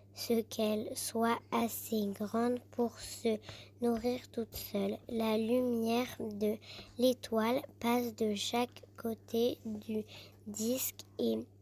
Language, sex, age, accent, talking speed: French, male, 20-39, French, 110 wpm